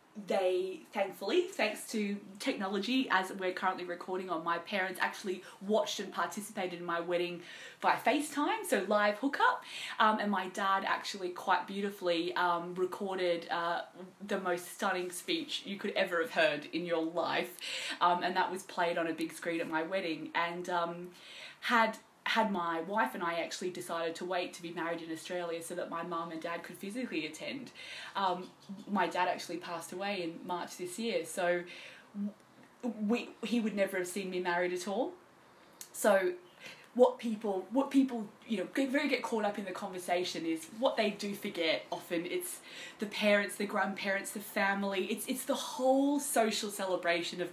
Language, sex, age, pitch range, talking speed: English, female, 20-39, 175-225 Hz, 175 wpm